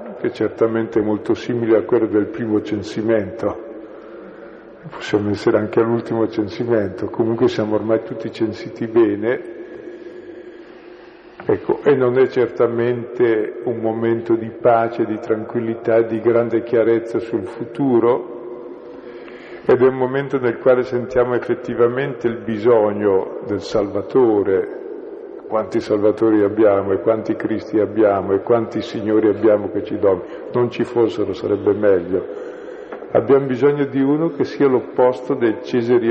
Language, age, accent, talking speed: Italian, 50-69, native, 125 wpm